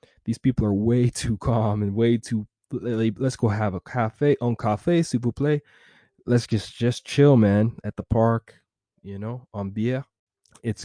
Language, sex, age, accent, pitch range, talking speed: English, male, 20-39, American, 105-125 Hz, 175 wpm